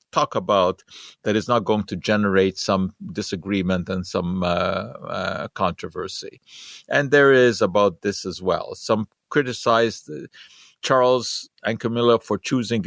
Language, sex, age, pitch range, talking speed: English, male, 50-69, 100-130 Hz, 135 wpm